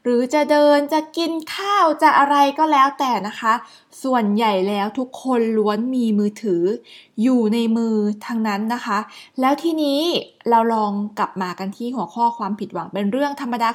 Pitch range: 220-300 Hz